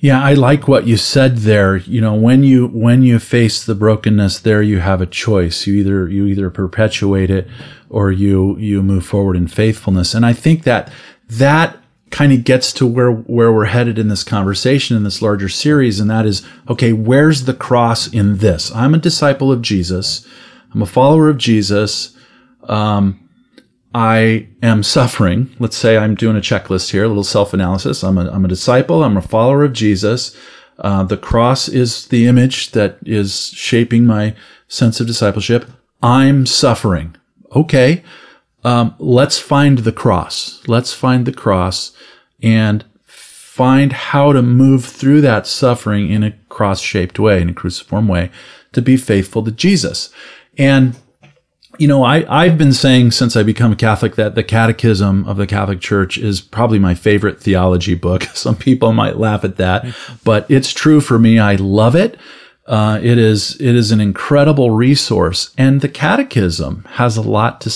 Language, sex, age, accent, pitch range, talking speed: English, male, 40-59, American, 100-130 Hz, 175 wpm